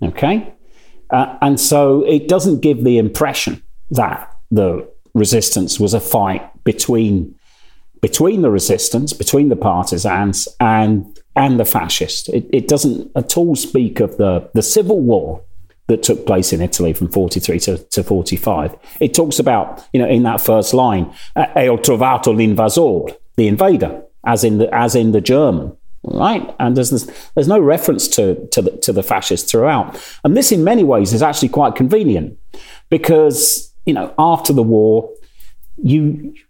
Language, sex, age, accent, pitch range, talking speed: English, male, 40-59, British, 100-140 Hz, 160 wpm